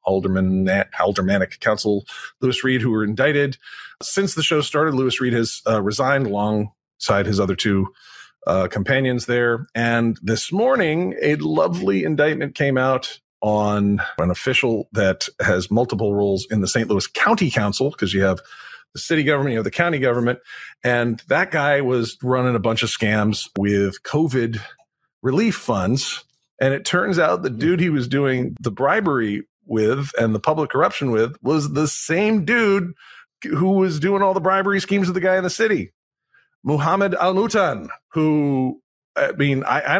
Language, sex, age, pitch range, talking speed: English, male, 40-59, 115-175 Hz, 165 wpm